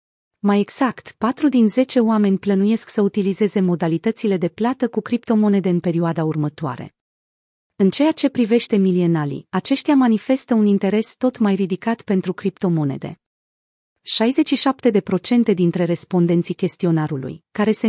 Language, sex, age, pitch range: Romanian, female, 30-49, 175-225 Hz